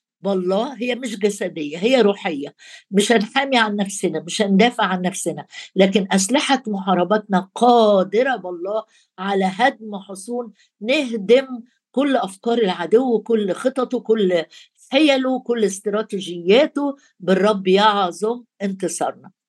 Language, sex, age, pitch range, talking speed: Arabic, female, 60-79, 190-235 Hz, 110 wpm